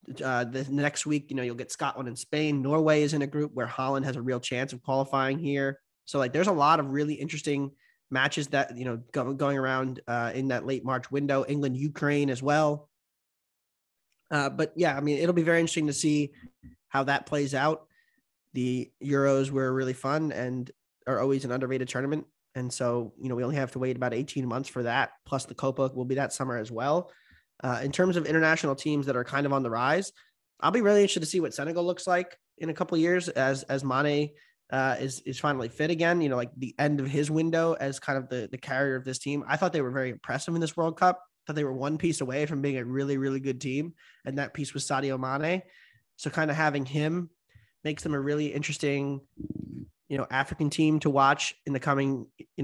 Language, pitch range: English, 130-150 Hz